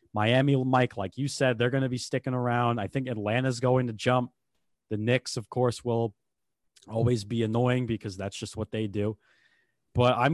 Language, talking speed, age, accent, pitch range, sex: English, 190 wpm, 20-39, American, 115-135 Hz, male